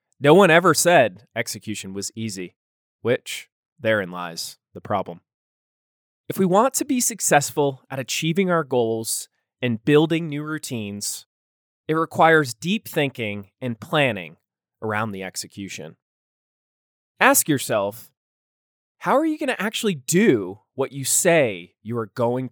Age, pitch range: 20-39, 115-165 Hz